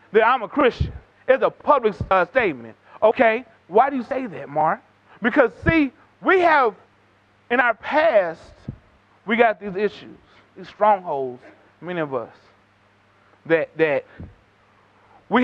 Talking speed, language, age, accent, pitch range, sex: 135 wpm, English, 30-49, American, 195-280 Hz, male